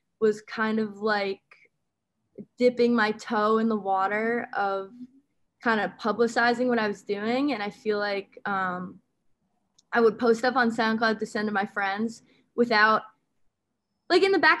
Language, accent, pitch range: English, American, 195-230 Hz